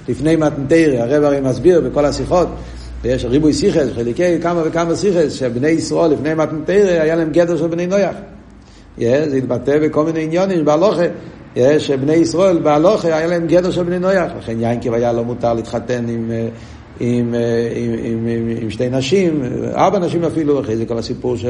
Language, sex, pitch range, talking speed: Hebrew, male, 115-165 Hz, 90 wpm